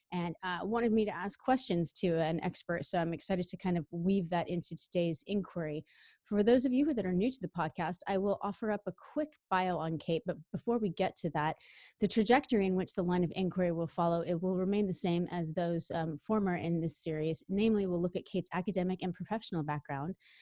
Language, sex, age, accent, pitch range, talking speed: English, female, 30-49, American, 160-190 Hz, 230 wpm